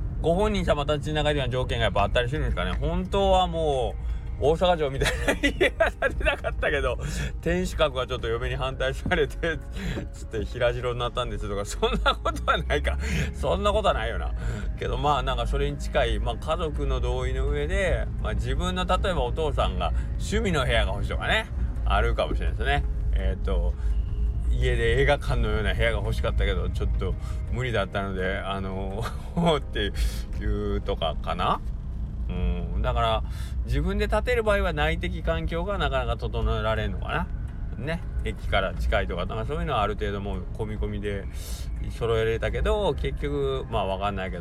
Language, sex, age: Japanese, male, 20-39